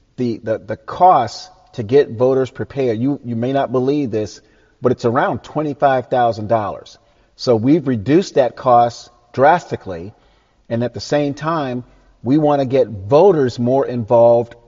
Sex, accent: male, American